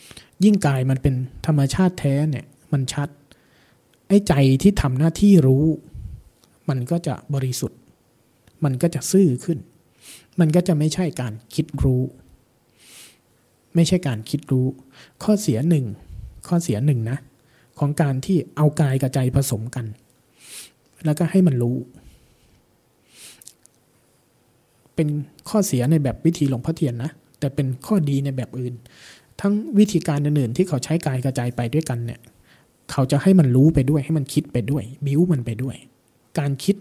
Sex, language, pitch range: male, Thai, 125-155 Hz